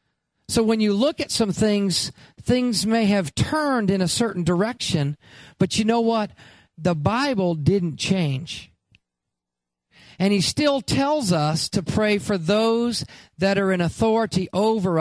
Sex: male